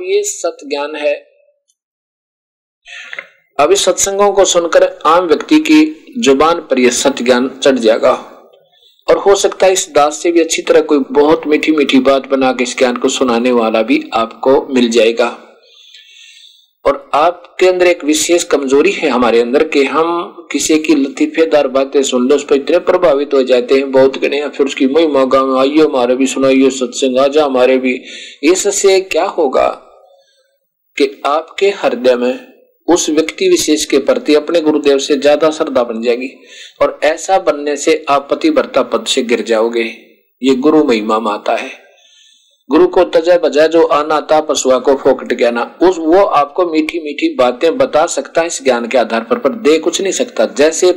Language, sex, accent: Hindi, male, native